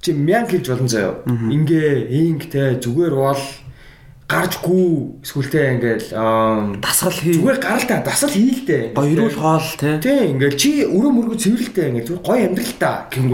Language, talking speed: English, 145 wpm